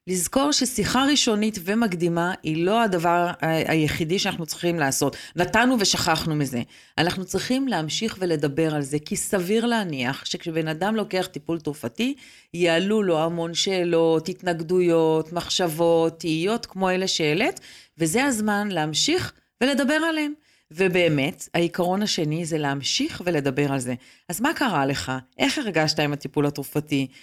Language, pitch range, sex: Hebrew, 155-215 Hz, female